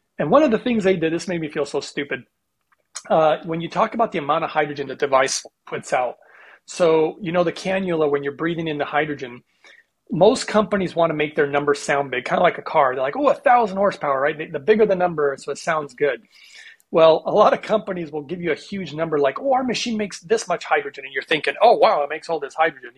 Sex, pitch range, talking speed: male, 145-185 Hz, 250 wpm